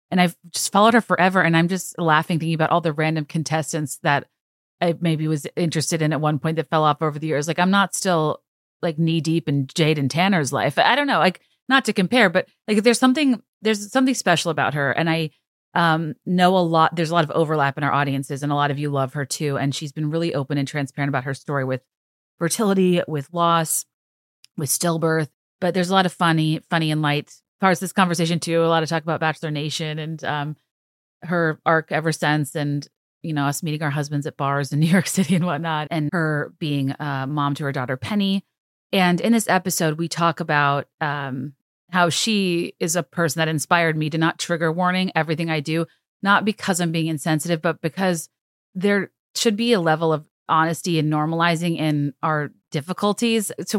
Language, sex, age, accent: English, female, 30-49, American